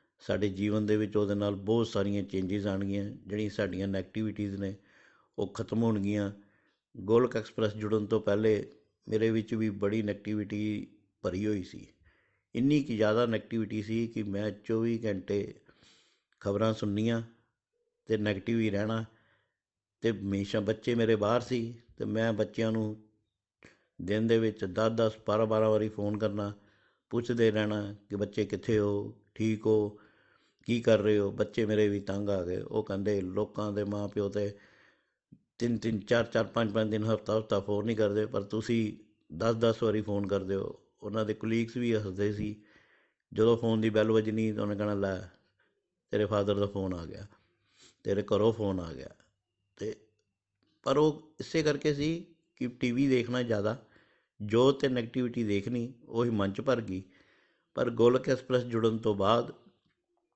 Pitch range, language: 100-115 Hz, Punjabi